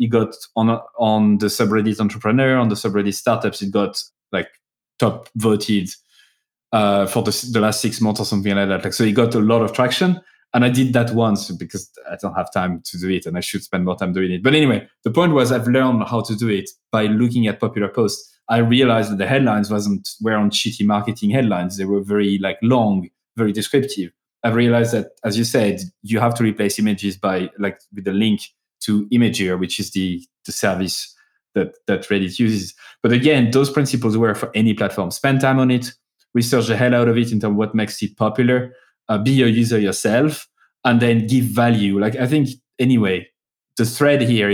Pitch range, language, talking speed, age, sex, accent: 100-120 Hz, English, 210 wpm, 20-39, male, French